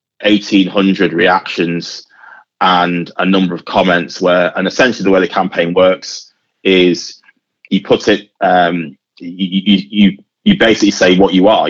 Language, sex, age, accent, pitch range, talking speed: English, male, 20-39, British, 90-100 Hz, 150 wpm